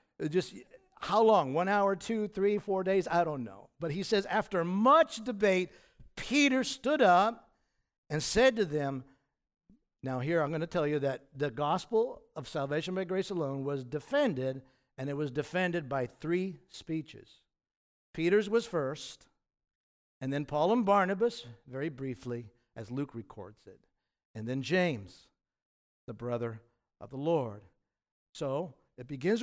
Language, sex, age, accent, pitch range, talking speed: English, male, 50-69, American, 140-210 Hz, 150 wpm